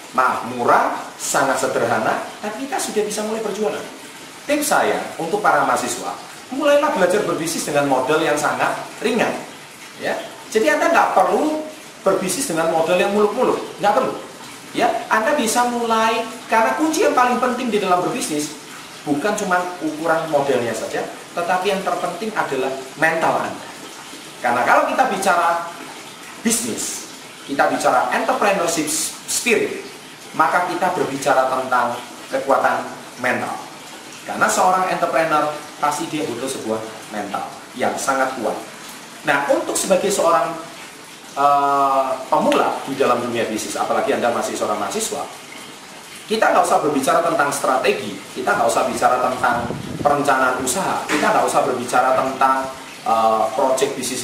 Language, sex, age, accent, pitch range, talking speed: Indonesian, male, 30-49, native, 140-225 Hz, 135 wpm